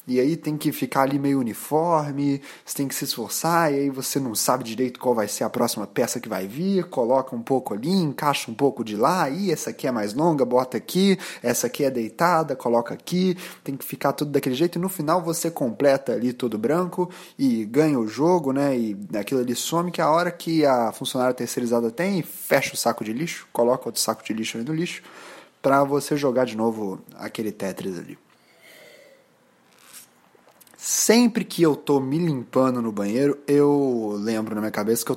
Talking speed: 205 wpm